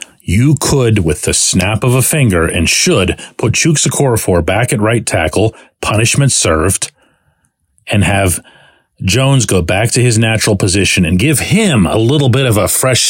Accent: American